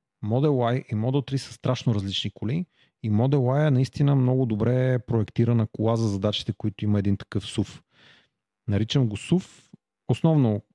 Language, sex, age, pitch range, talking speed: Bulgarian, male, 40-59, 115-140 Hz, 160 wpm